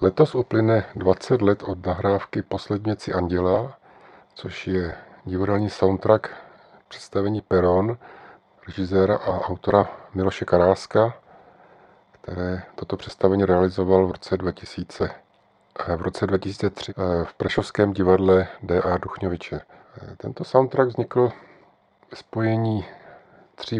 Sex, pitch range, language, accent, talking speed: male, 90-105 Hz, Czech, native, 100 wpm